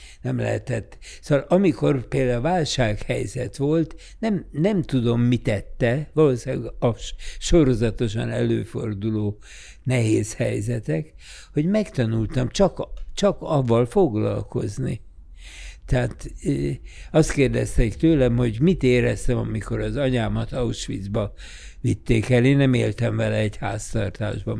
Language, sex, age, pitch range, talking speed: Hungarian, male, 60-79, 110-135 Hz, 105 wpm